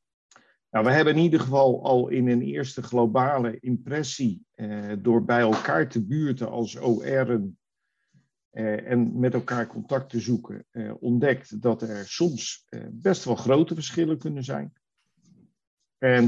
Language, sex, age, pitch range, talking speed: Dutch, male, 50-69, 110-125 Hz, 145 wpm